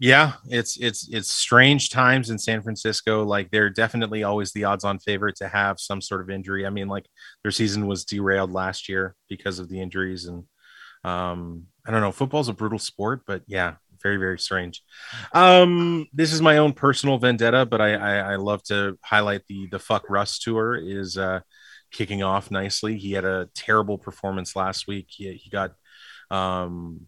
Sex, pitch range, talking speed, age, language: male, 95-110 Hz, 185 wpm, 30-49, English